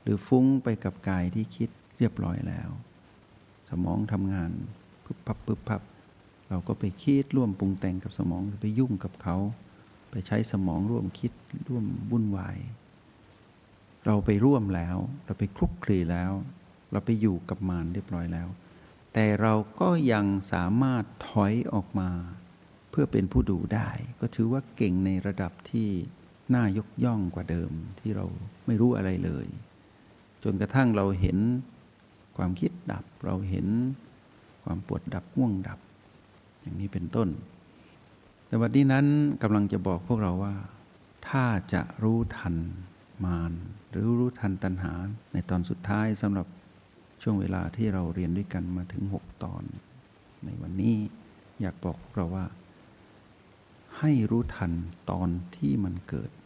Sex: male